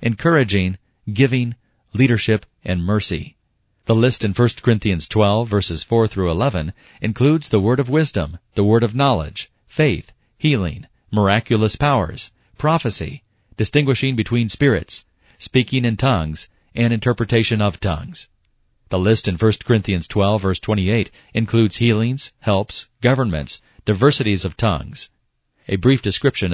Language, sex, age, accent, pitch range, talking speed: English, male, 40-59, American, 95-125 Hz, 125 wpm